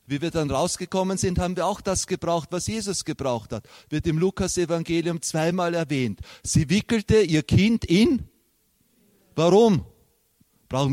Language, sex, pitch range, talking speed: German, male, 140-185 Hz, 145 wpm